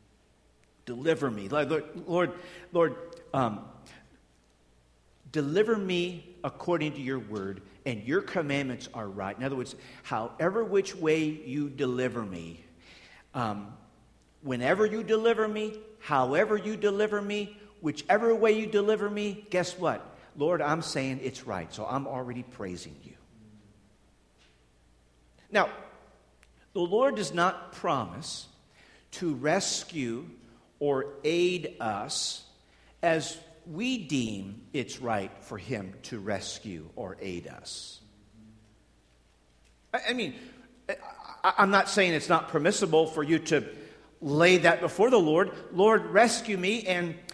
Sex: male